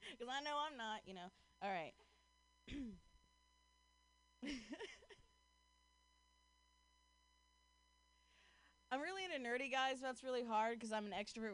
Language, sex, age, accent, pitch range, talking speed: English, female, 20-39, American, 170-255 Hz, 115 wpm